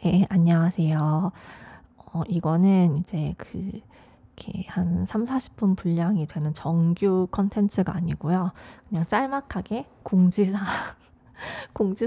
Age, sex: 20-39, female